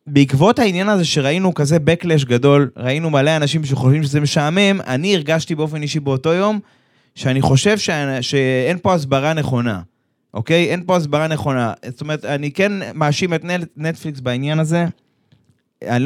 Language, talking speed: Hebrew, 155 wpm